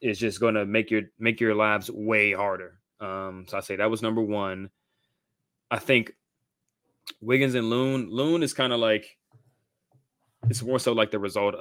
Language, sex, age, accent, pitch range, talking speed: English, male, 20-39, American, 100-115 Hz, 180 wpm